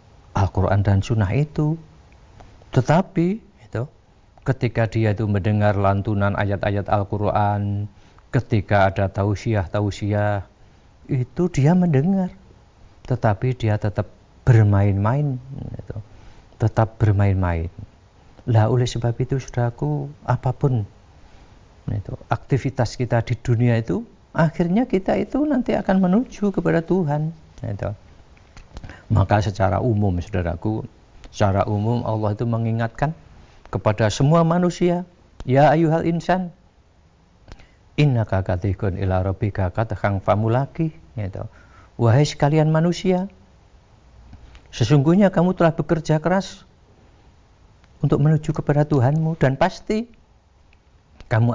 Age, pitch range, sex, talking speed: 50-69, 100-145 Hz, male, 90 wpm